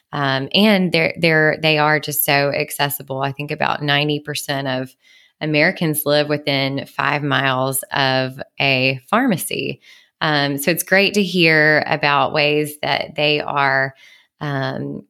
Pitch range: 145-160 Hz